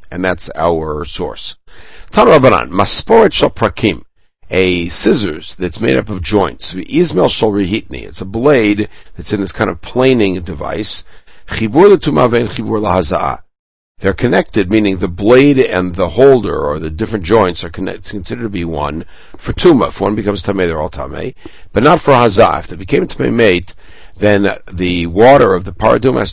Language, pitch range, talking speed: English, 85-105 Hz, 160 wpm